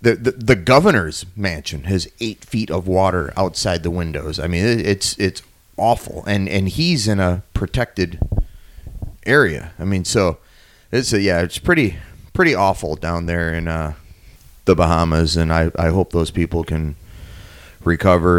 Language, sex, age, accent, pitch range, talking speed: English, male, 30-49, American, 80-100 Hz, 165 wpm